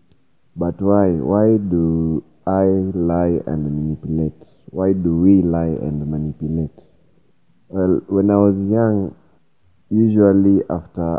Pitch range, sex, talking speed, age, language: 80-95 Hz, male, 115 wpm, 30-49, English